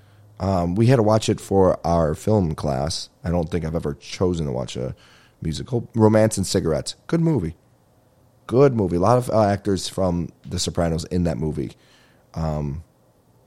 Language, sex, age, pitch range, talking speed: English, male, 30-49, 80-100 Hz, 175 wpm